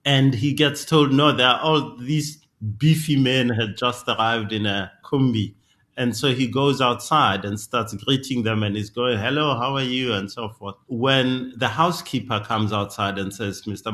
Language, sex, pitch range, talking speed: English, male, 110-150 Hz, 195 wpm